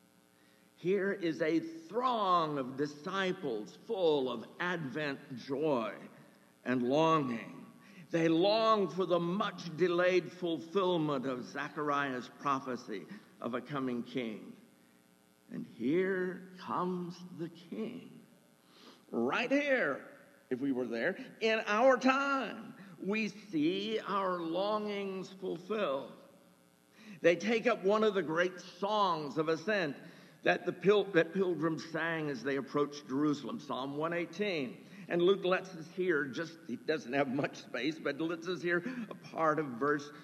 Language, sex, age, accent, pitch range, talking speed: English, male, 60-79, American, 140-195 Hz, 125 wpm